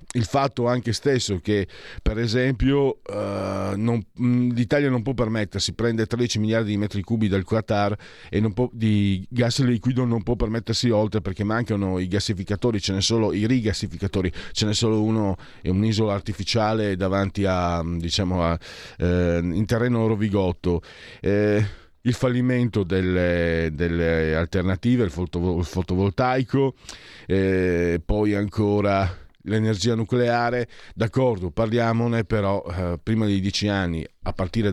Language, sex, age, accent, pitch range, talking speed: Italian, male, 40-59, native, 95-115 Hz, 140 wpm